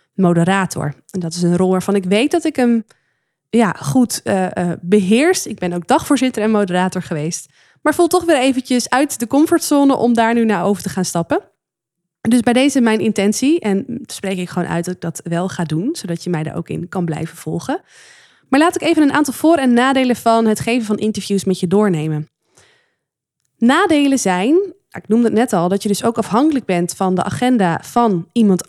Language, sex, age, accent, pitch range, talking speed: Dutch, female, 20-39, Dutch, 180-245 Hz, 205 wpm